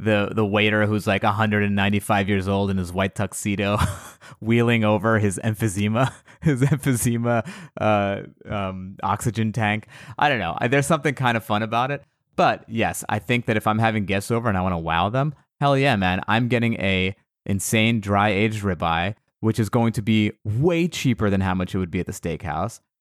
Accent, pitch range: American, 100-125 Hz